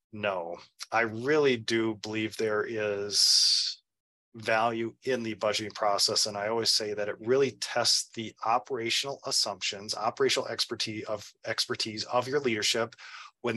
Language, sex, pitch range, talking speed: English, male, 105-135 Hz, 135 wpm